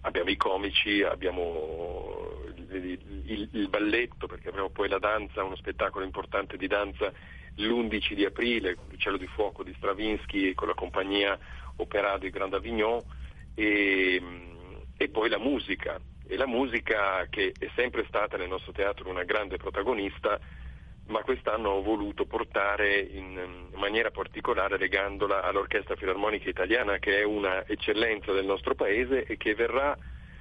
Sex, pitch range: male, 90-115 Hz